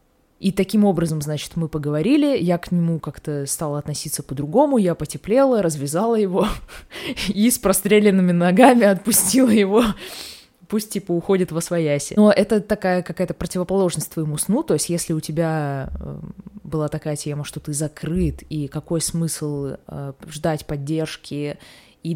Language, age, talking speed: Russian, 20-39, 140 wpm